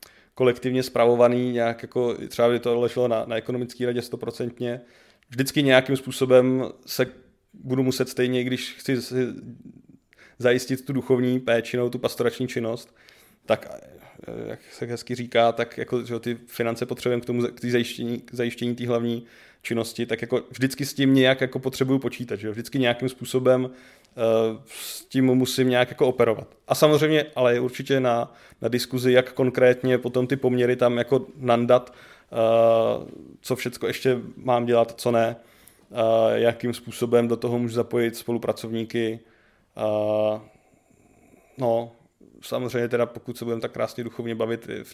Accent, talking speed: native, 150 wpm